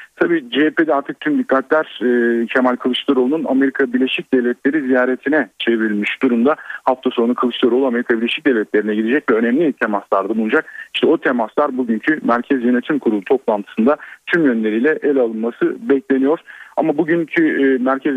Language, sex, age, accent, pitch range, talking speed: Turkish, male, 40-59, native, 125-175 Hz, 135 wpm